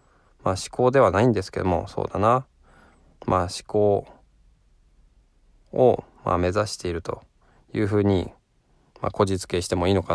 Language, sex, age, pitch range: Japanese, male, 20-39, 90-110 Hz